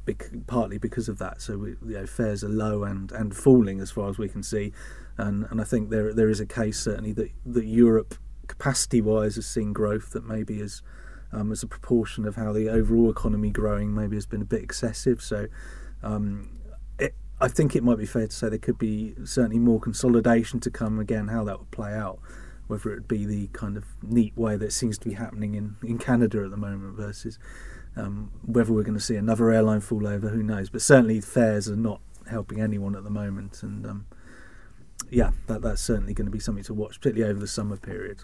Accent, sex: British, male